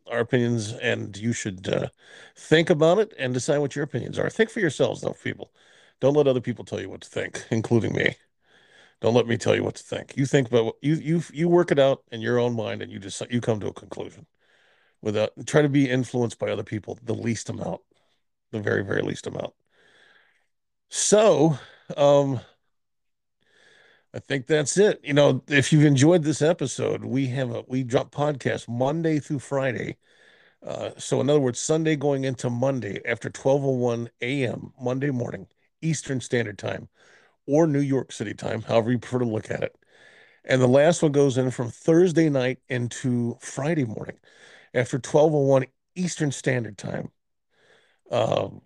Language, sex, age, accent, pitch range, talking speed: English, male, 50-69, American, 120-150 Hz, 180 wpm